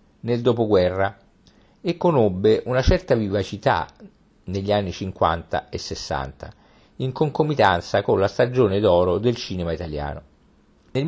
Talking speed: 120 wpm